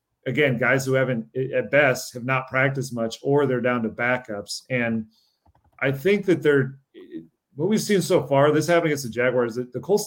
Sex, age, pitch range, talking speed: male, 30-49, 115-135 Hz, 195 wpm